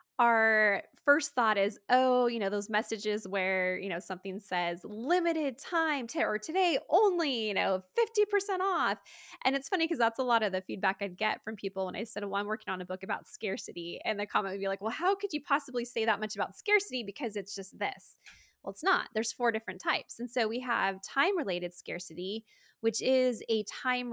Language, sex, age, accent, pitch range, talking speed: English, female, 20-39, American, 200-255 Hz, 210 wpm